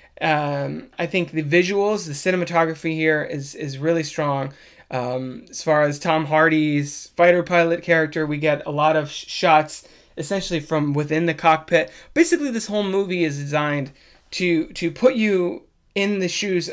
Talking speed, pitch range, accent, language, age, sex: 160 wpm, 150-180 Hz, American, English, 20-39, male